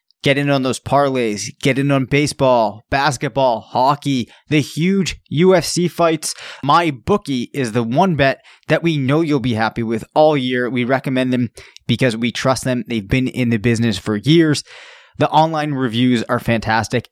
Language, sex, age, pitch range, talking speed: English, male, 20-39, 125-150 Hz, 170 wpm